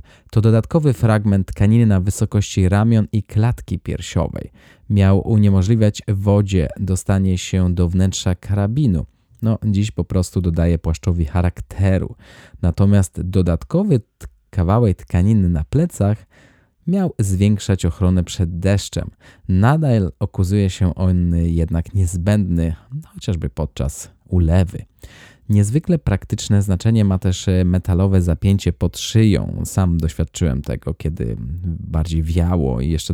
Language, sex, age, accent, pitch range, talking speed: Polish, male, 20-39, native, 85-105 Hz, 115 wpm